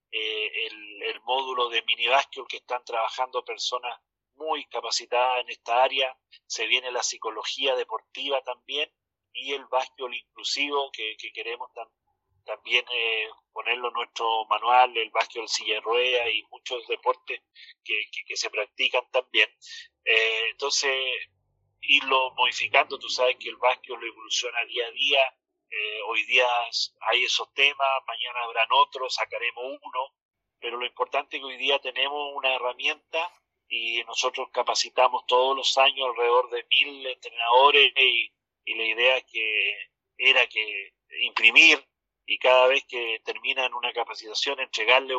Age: 40-59